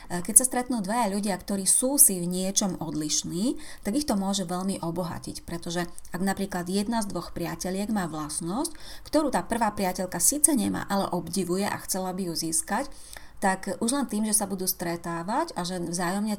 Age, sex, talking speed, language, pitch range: 30-49, female, 185 wpm, Slovak, 175-210 Hz